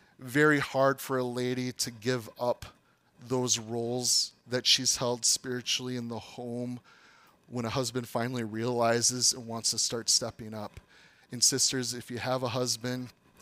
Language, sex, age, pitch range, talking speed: English, male, 30-49, 120-140 Hz, 155 wpm